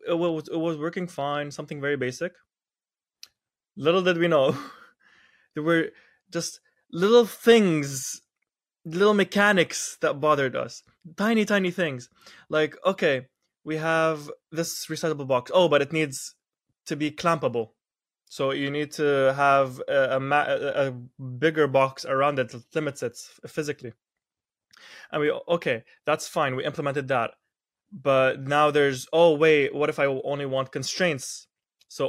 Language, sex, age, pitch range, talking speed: English, male, 20-39, 135-160 Hz, 140 wpm